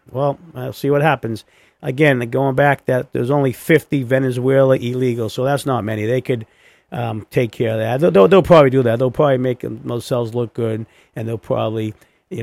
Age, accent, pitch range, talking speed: 50-69, American, 115-160 Hz, 200 wpm